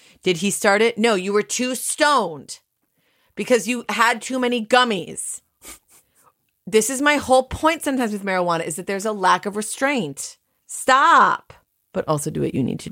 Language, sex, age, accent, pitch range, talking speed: English, female, 30-49, American, 145-205 Hz, 175 wpm